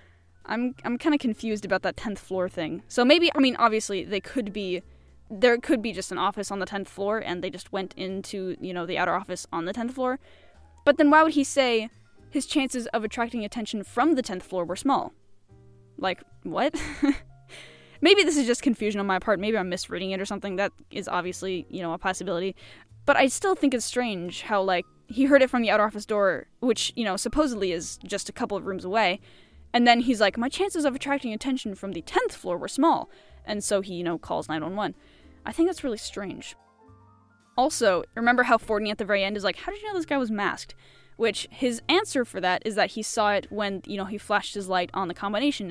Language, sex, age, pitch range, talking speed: English, female, 10-29, 185-245 Hz, 230 wpm